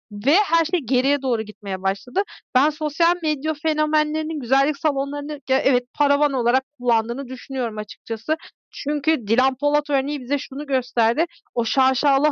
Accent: native